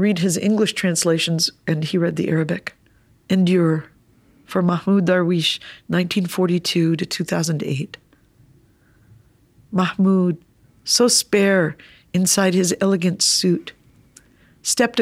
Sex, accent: female, American